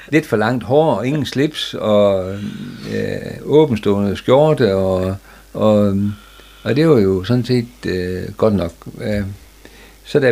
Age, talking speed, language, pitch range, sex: 60-79, 140 wpm, Danish, 95-120 Hz, male